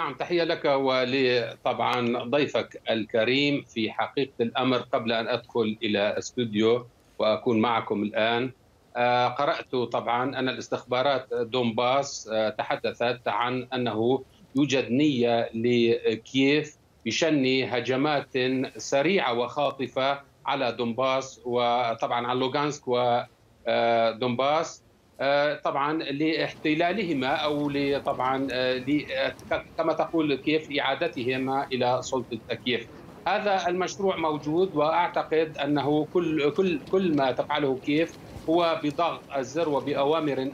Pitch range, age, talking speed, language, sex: 125-150 Hz, 50-69, 95 wpm, Arabic, male